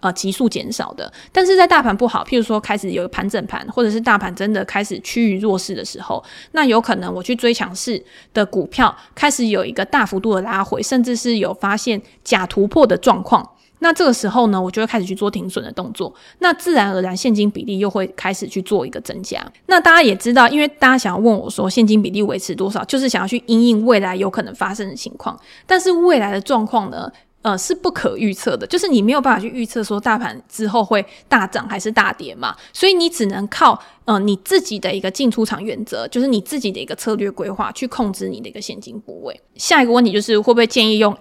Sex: female